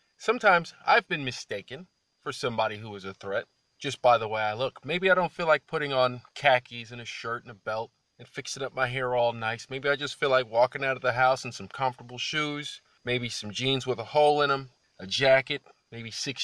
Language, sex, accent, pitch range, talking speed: English, male, American, 115-140 Hz, 230 wpm